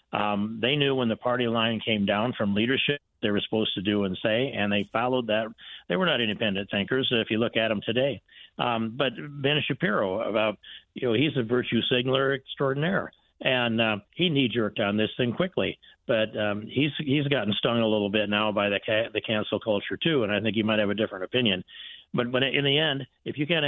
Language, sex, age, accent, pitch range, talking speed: English, male, 50-69, American, 110-135 Hz, 220 wpm